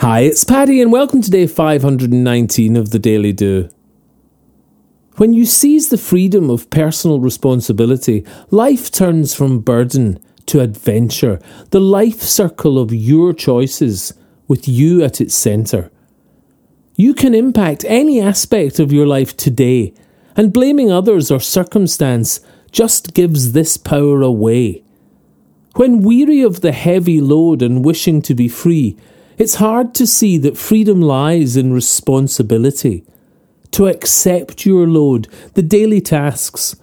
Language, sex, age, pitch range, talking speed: English, male, 40-59, 120-185 Hz, 135 wpm